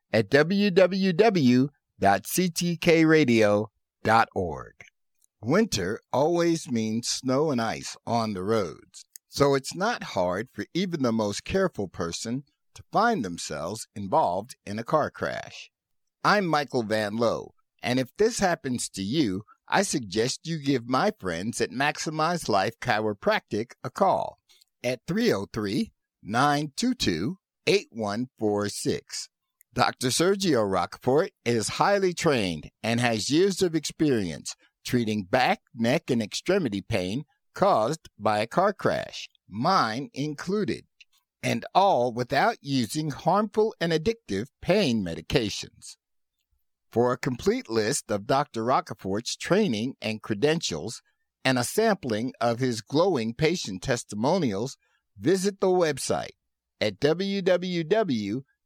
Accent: American